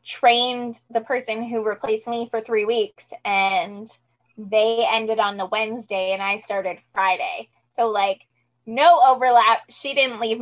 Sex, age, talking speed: female, 20-39, 150 wpm